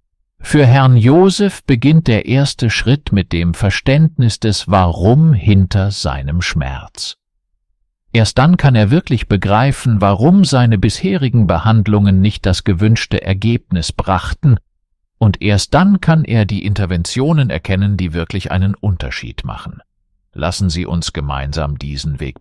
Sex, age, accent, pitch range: male, 50-69, German, 80-110 Hz